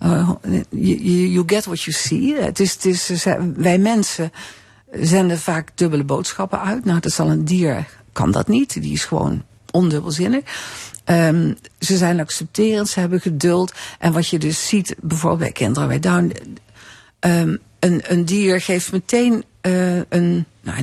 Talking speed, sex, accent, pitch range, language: 165 wpm, female, Dutch, 155-195 Hz, Dutch